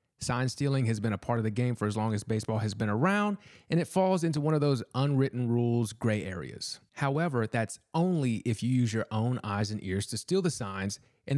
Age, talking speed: 30-49, 230 wpm